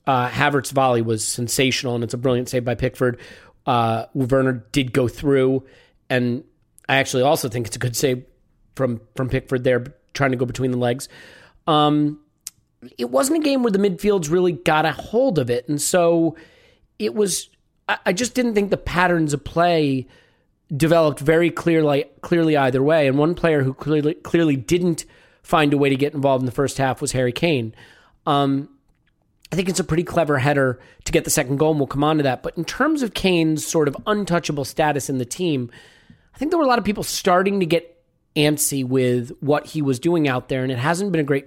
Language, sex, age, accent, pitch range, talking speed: English, male, 30-49, American, 130-170 Hz, 210 wpm